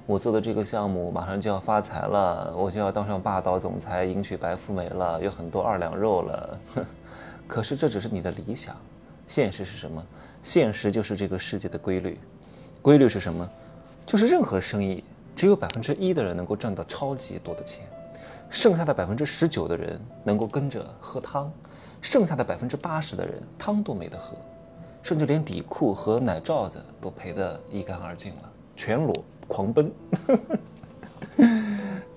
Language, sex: Chinese, male